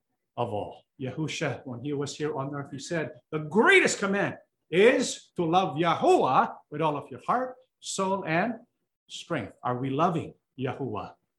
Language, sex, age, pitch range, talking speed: English, male, 50-69, 145-220 Hz, 160 wpm